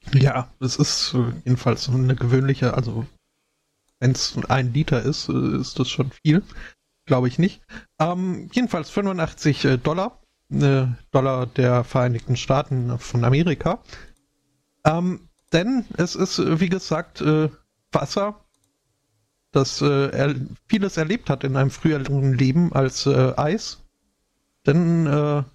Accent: German